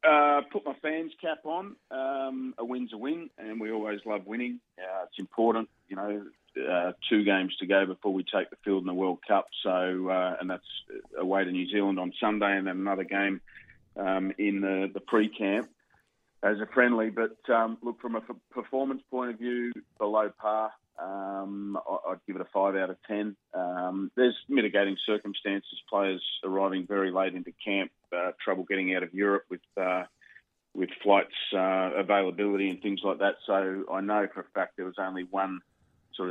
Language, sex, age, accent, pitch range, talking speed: English, male, 30-49, Australian, 95-110 Hz, 190 wpm